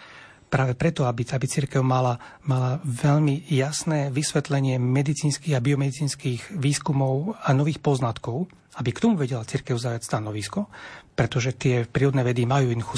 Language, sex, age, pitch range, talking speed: Slovak, male, 40-59, 130-155 Hz, 135 wpm